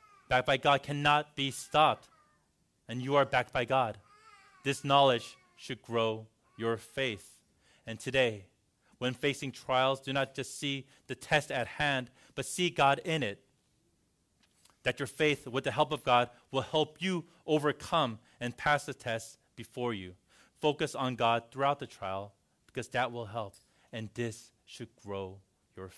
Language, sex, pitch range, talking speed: English, male, 105-135 Hz, 160 wpm